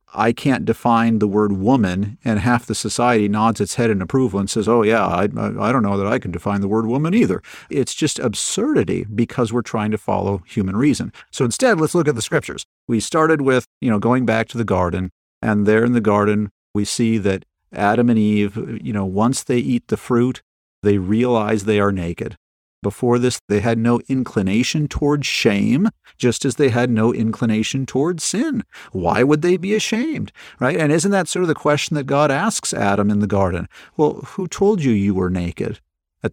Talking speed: 205 wpm